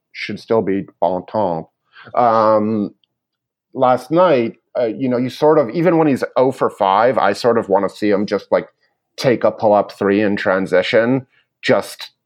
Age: 30-49